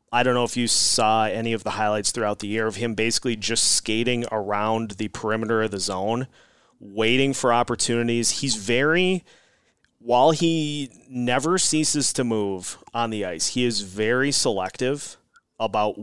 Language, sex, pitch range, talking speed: English, male, 110-125 Hz, 160 wpm